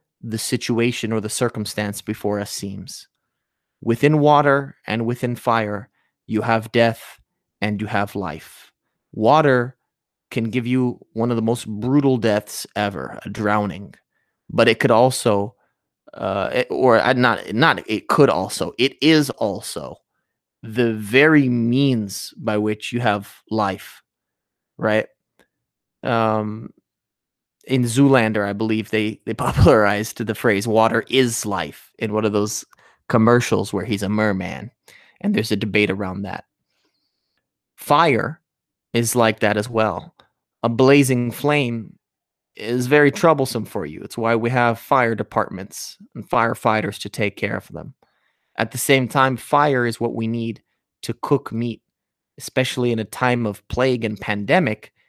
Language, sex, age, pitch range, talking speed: English, male, 30-49, 105-125 Hz, 145 wpm